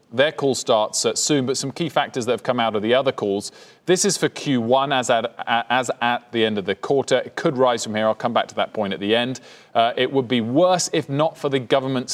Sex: male